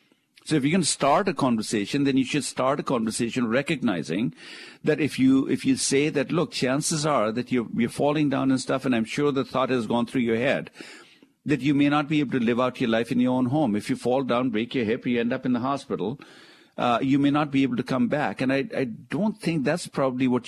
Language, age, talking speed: English, 50-69, 250 wpm